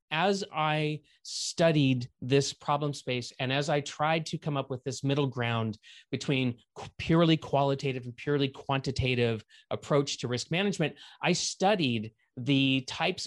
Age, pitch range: 30-49, 120-150 Hz